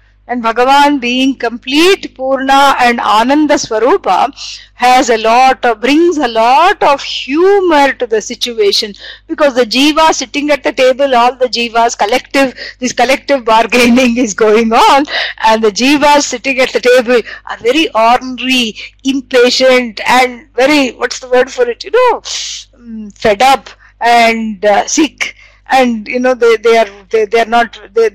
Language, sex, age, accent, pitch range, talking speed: English, female, 50-69, Indian, 235-295 Hz, 155 wpm